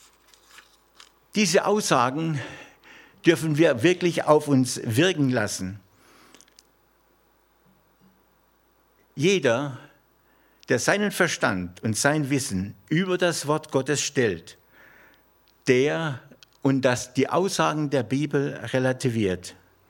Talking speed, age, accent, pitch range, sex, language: 85 wpm, 60-79, German, 115-160 Hz, male, German